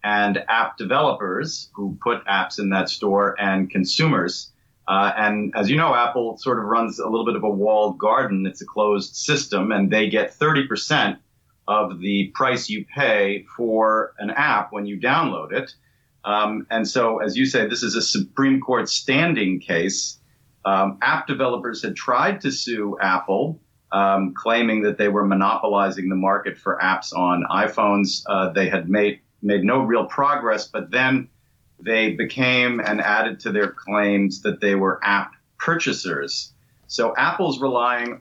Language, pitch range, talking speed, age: English, 100-120 Hz, 165 wpm, 40-59